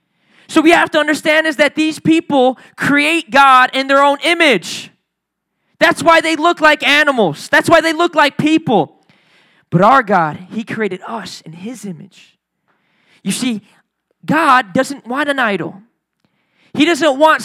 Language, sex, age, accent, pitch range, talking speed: English, male, 20-39, American, 210-295 Hz, 160 wpm